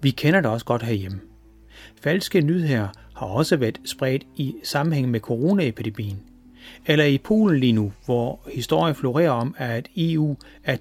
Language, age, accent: Danish, 30-49, native